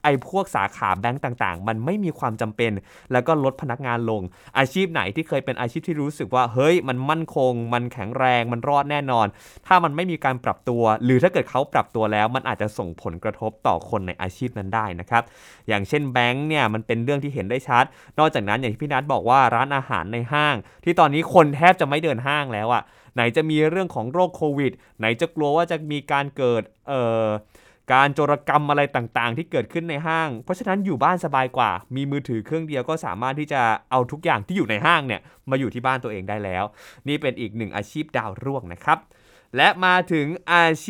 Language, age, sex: Thai, 20-39, male